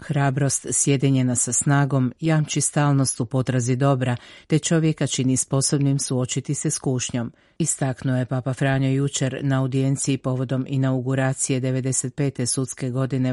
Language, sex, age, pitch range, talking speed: Croatian, female, 40-59, 130-140 Hz, 125 wpm